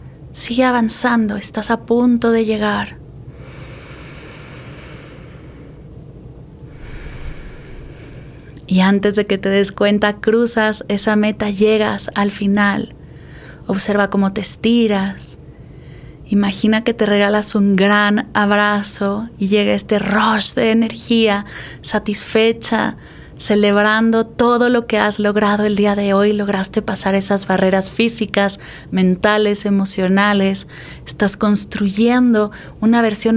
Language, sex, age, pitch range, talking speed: Spanish, female, 20-39, 200-225 Hz, 105 wpm